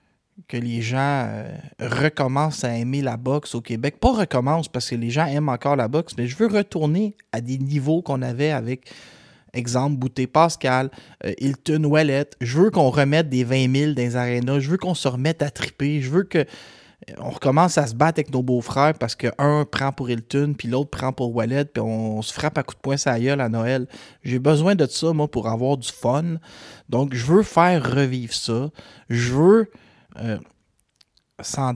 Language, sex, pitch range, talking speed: French, male, 120-155 Hz, 195 wpm